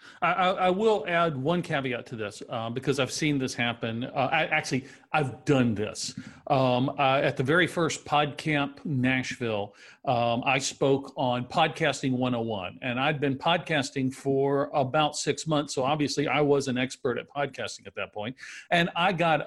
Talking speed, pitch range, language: 170 wpm, 130-155 Hz, English